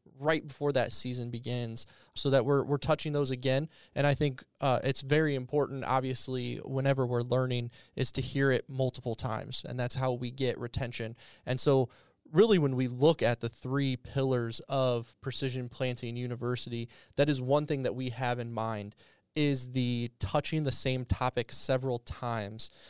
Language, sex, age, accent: English, male, 20-39, American